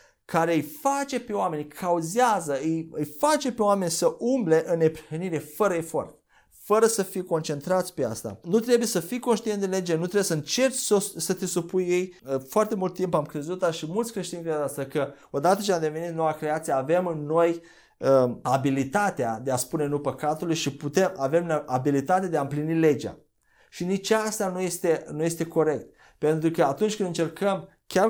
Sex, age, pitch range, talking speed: male, 30-49, 150-185 Hz, 190 wpm